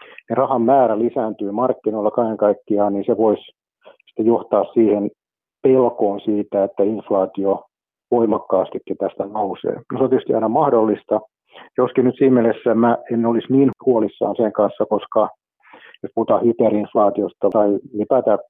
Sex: male